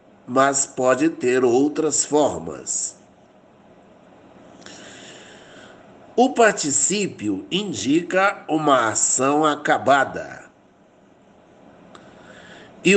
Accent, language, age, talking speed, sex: Brazilian, Portuguese, 60-79, 55 wpm, male